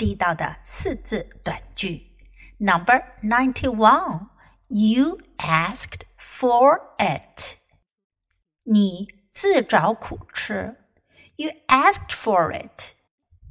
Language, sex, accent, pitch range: Chinese, female, American, 200-290 Hz